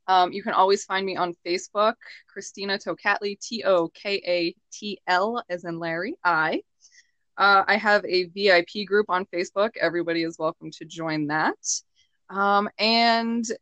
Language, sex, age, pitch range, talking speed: English, female, 20-39, 170-205 Hz, 135 wpm